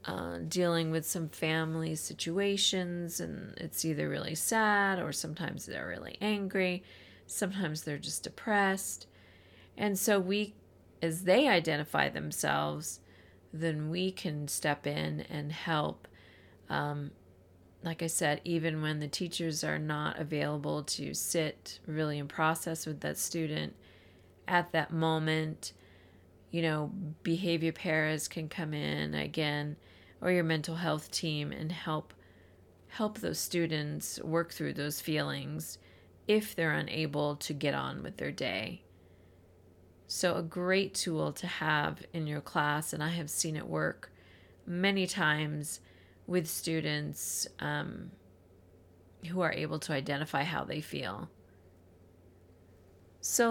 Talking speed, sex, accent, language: 130 wpm, female, American, English